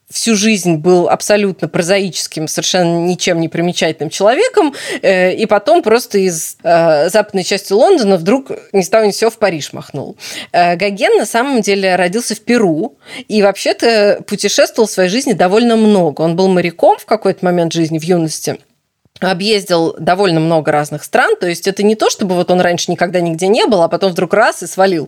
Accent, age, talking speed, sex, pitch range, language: native, 20-39, 180 wpm, female, 175-215 Hz, Russian